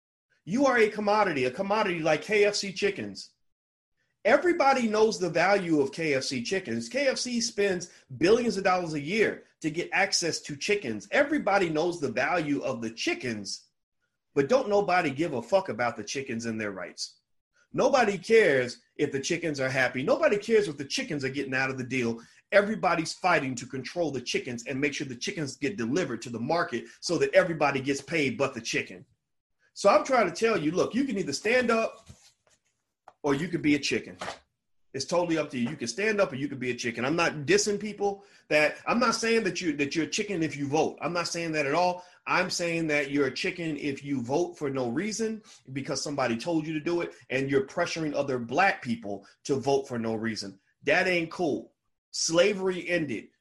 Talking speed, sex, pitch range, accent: 200 wpm, male, 140-200 Hz, American